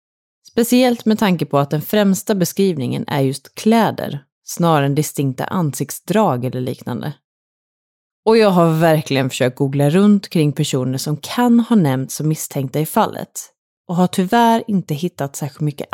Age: 30-49